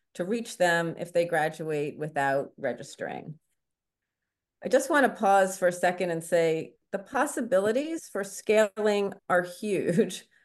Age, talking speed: 40-59, 140 wpm